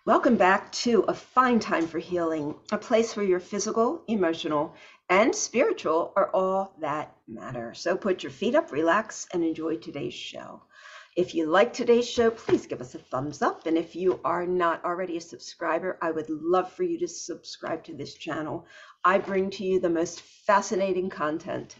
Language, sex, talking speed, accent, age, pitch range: English, female, 185 wpm, American, 50-69, 165-225 Hz